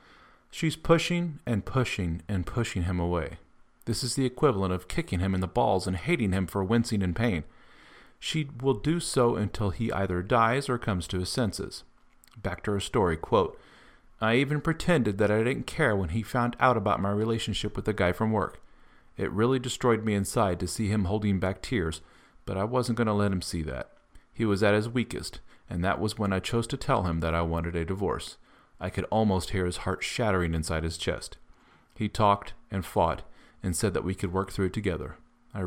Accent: American